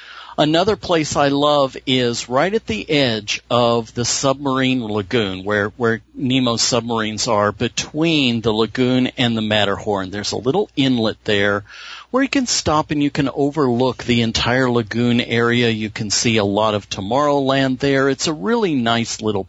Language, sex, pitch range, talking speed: English, male, 115-150 Hz, 165 wpm